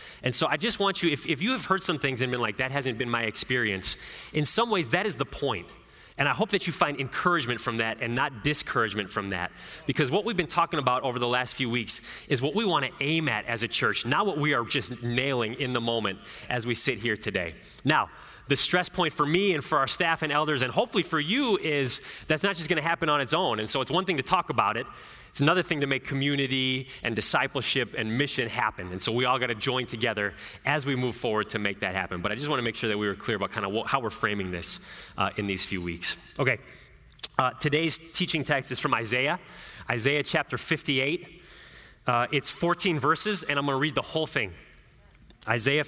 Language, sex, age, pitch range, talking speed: English, male, 30-49, 115-160 Hz, 245 wpm